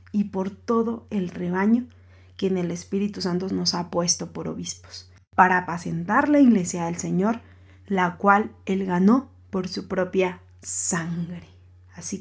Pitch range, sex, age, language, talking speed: 165-210 Hz, female, 30-49, Spanish, 145 wpm